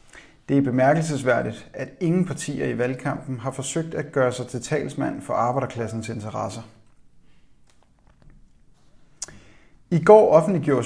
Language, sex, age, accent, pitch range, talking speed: Danish, male, 30-49, native, 125-150 Hz, 115 wpm